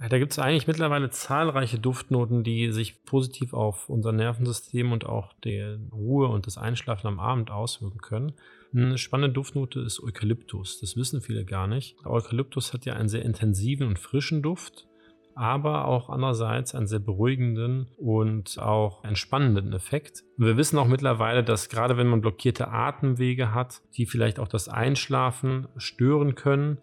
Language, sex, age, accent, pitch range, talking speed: German, male, 30-49, German, 110-130 Hz, 160 wpm